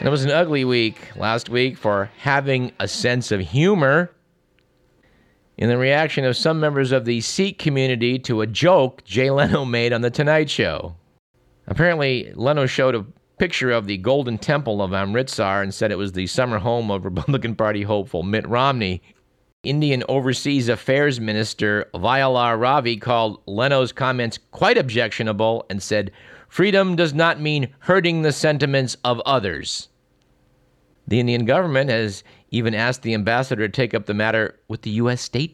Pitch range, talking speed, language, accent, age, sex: 110-140 Hz, 160 wpm, English, American, 50-69, male